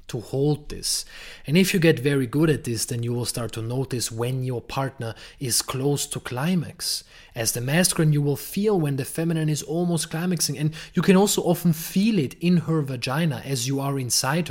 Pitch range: 115-155 Hz